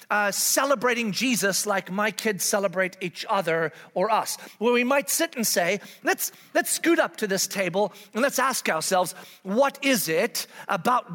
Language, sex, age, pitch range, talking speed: English, male, 40-59, 200-255 Hz, 180 wpm